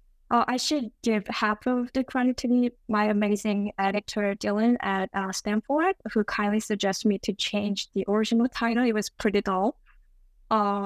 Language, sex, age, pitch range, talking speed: English, female, 20-39, 195-225 Hz, 165 wpm